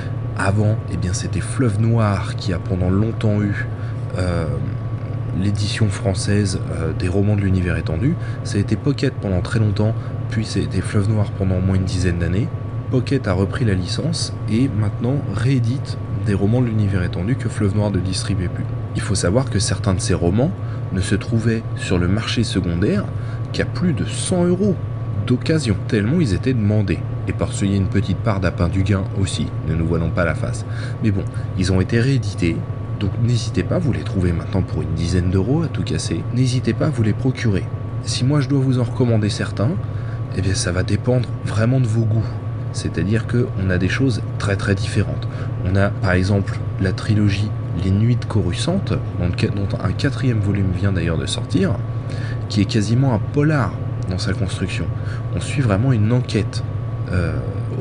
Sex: male